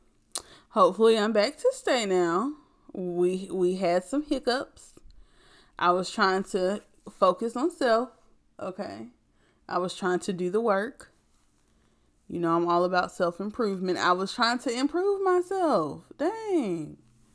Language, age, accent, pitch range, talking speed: English, 20-39, American, 175-250 Hz, 135 wpm